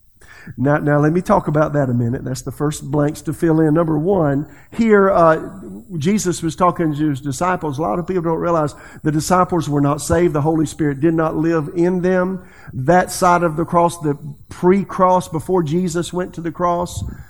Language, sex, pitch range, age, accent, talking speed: English, male, 150-180 Hz, 50-69, American, 200 wpm